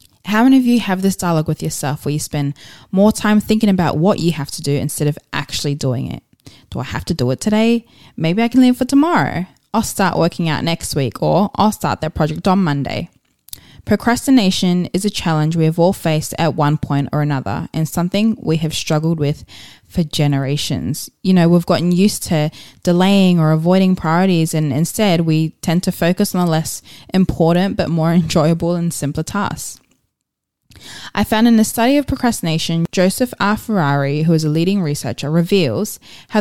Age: 20-39